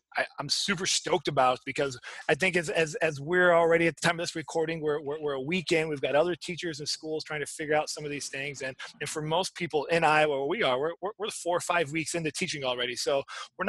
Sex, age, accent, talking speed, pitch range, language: male, 20-39, American, 250 wpm, 140-170 Hz, English